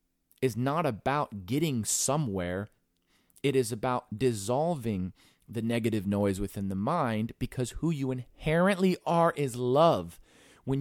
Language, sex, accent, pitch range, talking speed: English, male, American, 110-155 Hz, 130 wpm